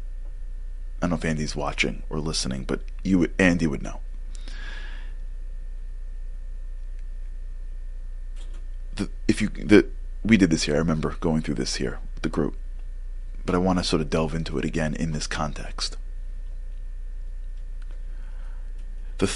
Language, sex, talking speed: English, male, 135 wpm